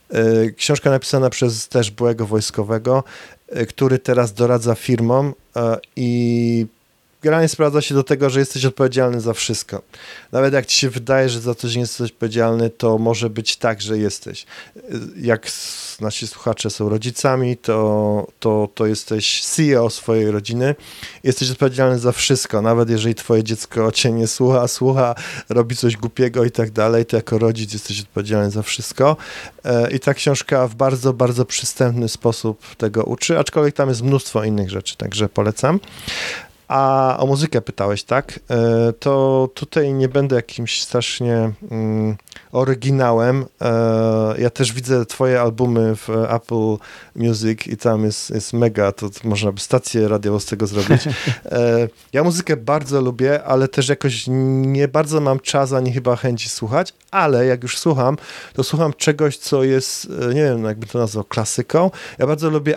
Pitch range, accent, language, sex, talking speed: 110-135 Hz, native, Polish, male, 150 wpm